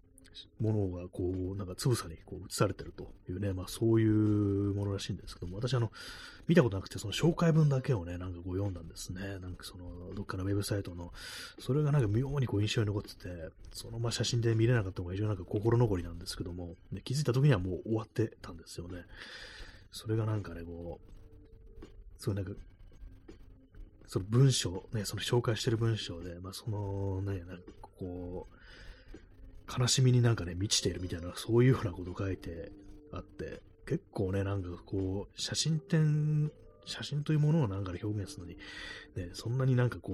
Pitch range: 90-115 Hz